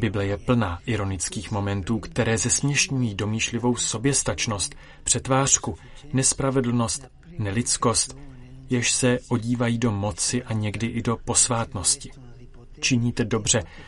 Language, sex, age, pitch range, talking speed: Czech, male, 30-49, 100-125 Hz, 105 wpm